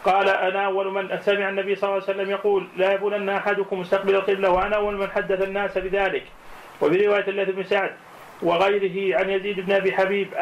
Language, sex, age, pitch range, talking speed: Arabic, male, 30-49, 195-205 Hz, 180 wpm